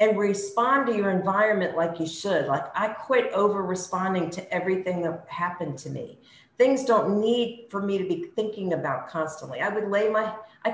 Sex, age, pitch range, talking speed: female, 50-69, 180-255 Hz, 190 wpm